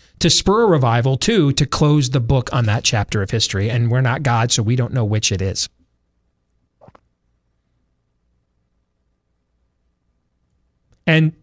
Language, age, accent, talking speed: English, 30-49, American, 135 wpm